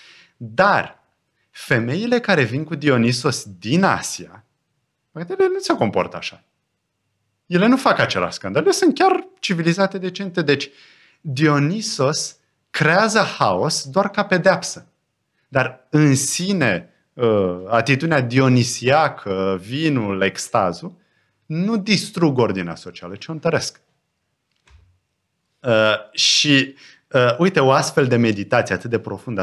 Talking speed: 110 wpm